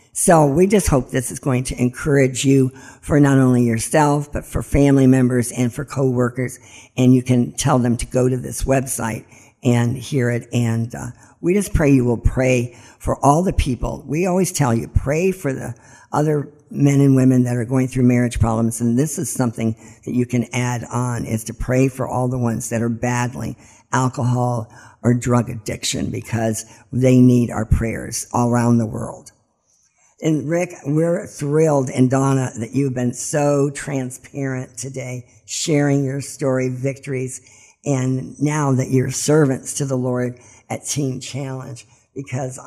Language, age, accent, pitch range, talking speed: English, 50-69, American, 120-140 Hz, 175 wpm